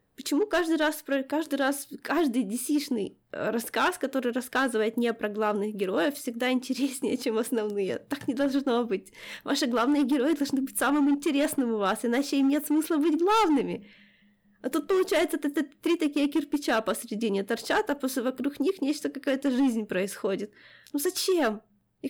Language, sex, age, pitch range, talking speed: Ukrainian, female, 20-39, 230-295 Hz, 155 wpm